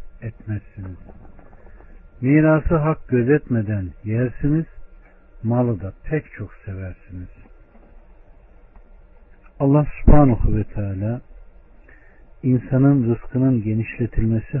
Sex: male